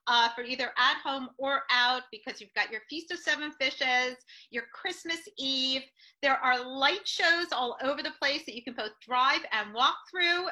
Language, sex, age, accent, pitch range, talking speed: English, female, 40-59, American, 220-290 Hz, 195 wpm